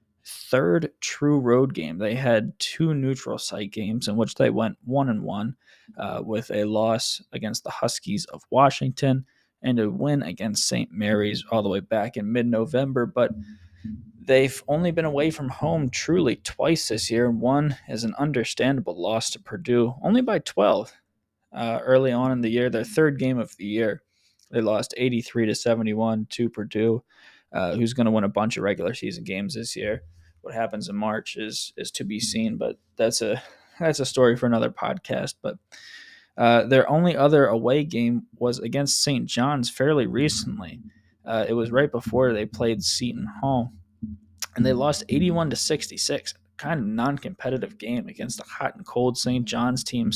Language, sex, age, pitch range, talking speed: English, male, 20-39, 110-130 Hz, 180 wpm